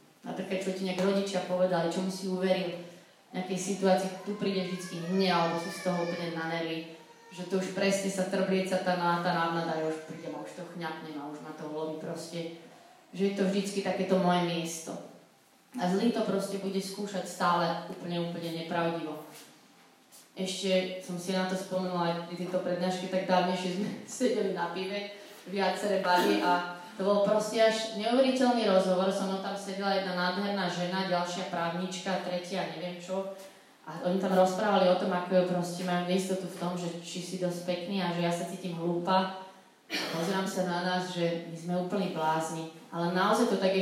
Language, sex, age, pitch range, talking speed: Slovak, female, 20-39, 175-195 Hz, 190 wpm